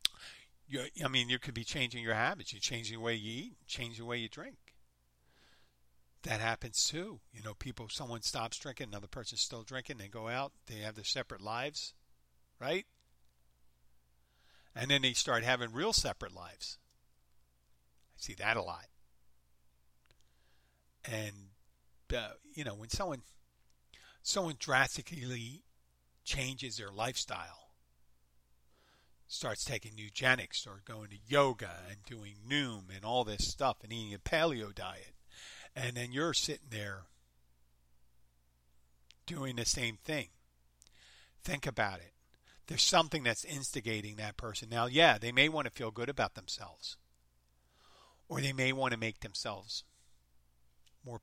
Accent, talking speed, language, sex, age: American, 140 wpm, English, male, 50-69